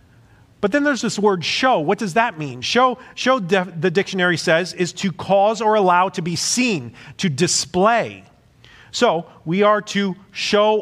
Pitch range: 150-200 Hz